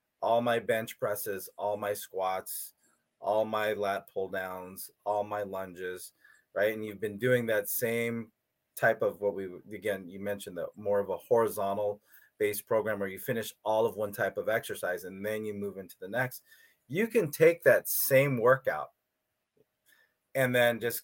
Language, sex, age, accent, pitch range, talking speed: English, male, 30-49, American, 105-135 Hz, 175 wpm